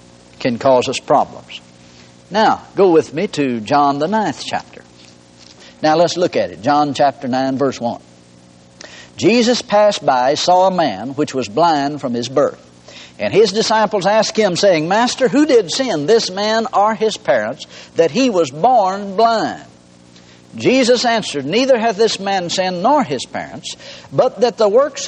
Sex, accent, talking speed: male, American, 165 wpm